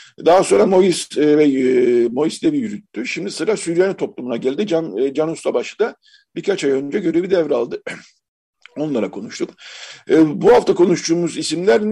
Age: 50-69